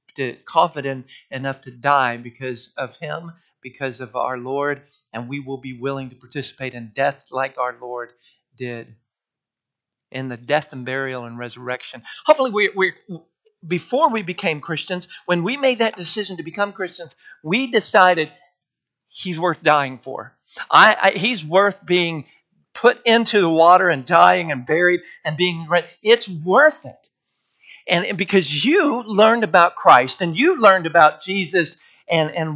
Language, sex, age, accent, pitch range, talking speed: English, male, 50-69, American, 135-195 Hz, 155 wpm